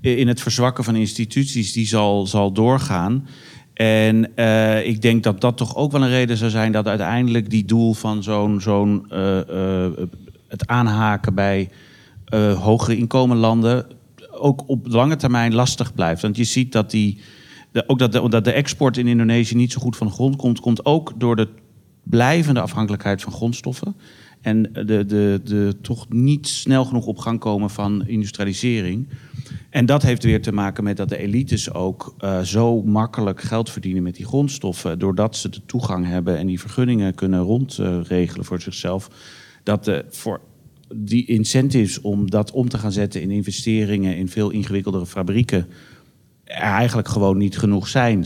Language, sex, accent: Dutch, male, Dutch